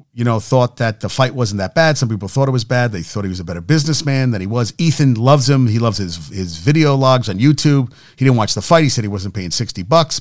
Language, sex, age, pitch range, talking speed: English, male, 40-59, 120-150 Hz, 280 wpm